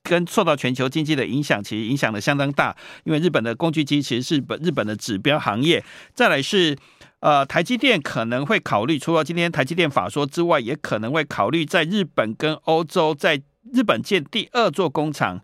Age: 50-69